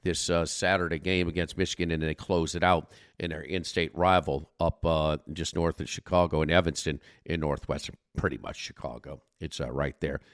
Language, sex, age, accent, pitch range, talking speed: English, male, 50-69, American, 90-135 Hz, 185 wpm